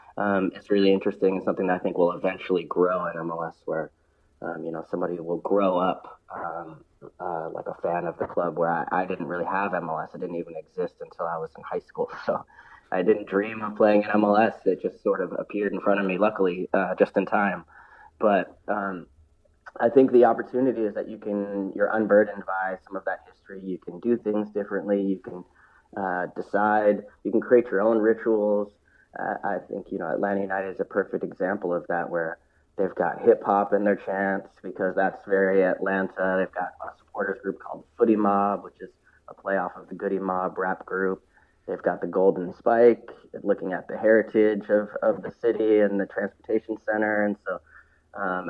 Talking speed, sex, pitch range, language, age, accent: 200 wpm, male, 95-110 Hz, English, 20-39, American